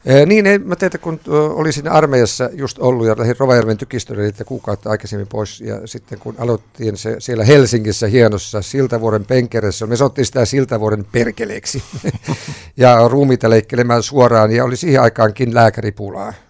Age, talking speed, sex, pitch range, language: 50-69, 155 wpm, male, 110-125 Hz, Finnish